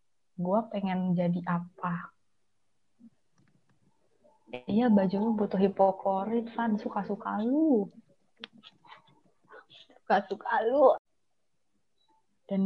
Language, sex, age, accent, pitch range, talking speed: Indonesian, female, 20-39, native, 185-220 Hz, 75 wpm